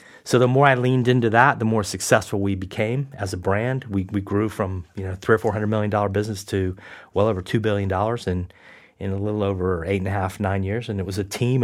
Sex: male